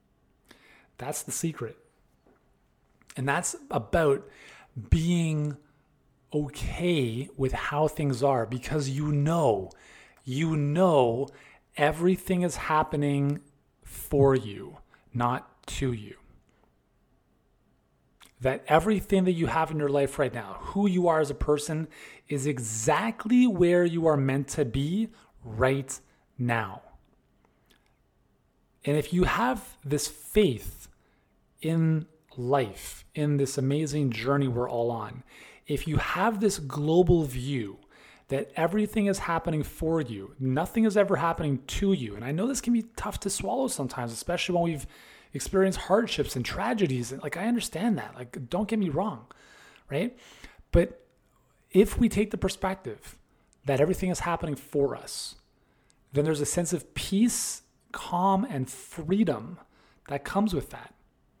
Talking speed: 135 wpm